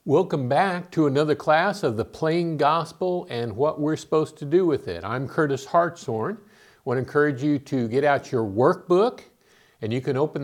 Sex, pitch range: male, 120-160 Hz